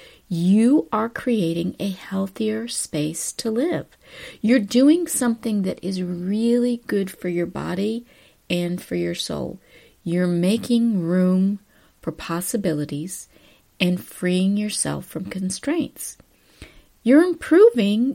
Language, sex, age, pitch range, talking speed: English, female, 40-59, 180-250 Hz, 110 wpm